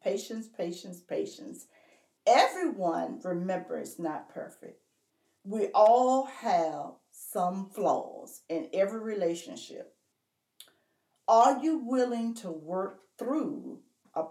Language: English